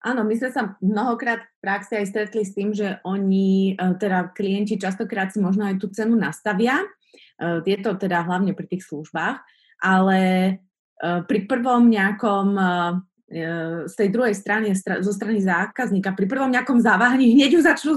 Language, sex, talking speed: Slovak, female, 155 wpm